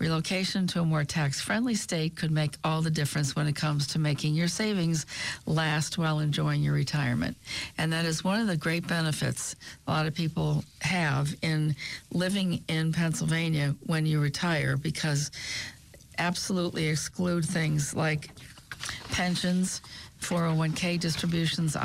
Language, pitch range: English, 150-180 Hz